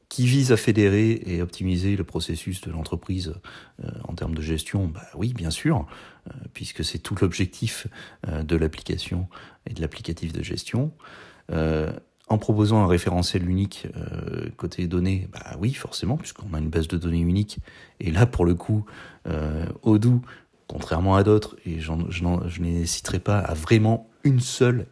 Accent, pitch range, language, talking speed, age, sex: French, 80-105 Hz, French, 170 wpm, 40-59, male